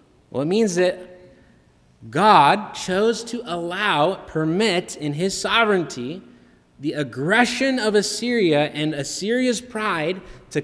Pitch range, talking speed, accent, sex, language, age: 150-195 Hz, 115 wpm, American, male, English, 20-39